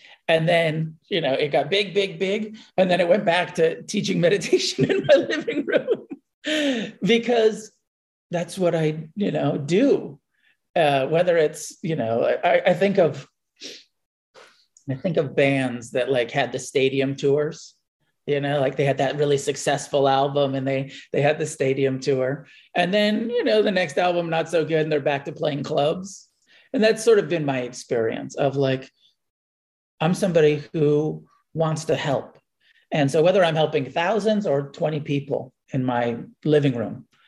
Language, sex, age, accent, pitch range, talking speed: English, male, 40-59, American, 135-175 Hz, 170 wpm